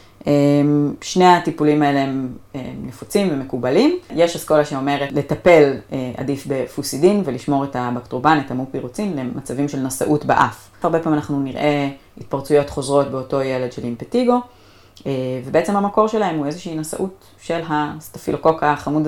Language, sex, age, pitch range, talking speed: Hebrew, female, 30-49, 125-155 Hz, 130 wpm